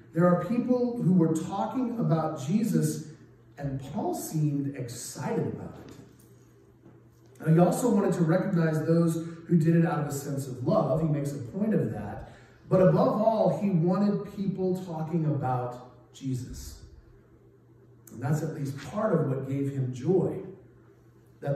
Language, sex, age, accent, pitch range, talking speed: English, male, 30-49, American, 130-180 Hz, 155 wpm